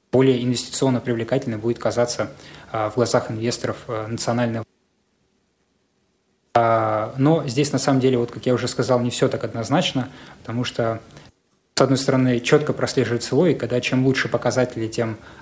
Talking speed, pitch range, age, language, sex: 130 wpm, 115-130 Hz, 20-39, Russian, male